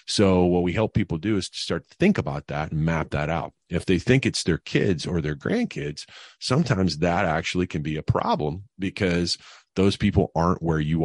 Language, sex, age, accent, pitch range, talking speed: English, male, 40-59, American, 75-90 Hz, 210 wpm